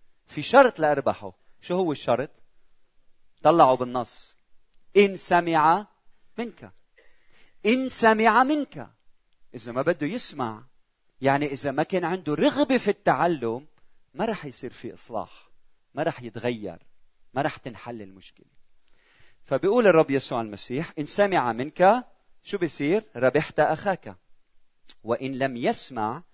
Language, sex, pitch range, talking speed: Arabic, male, 130-200 Hz, 120 wpm